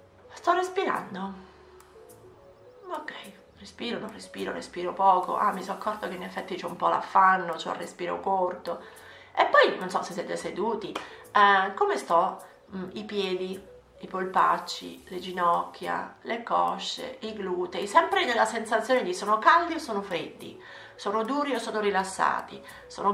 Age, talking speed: 30-49, 155 wpm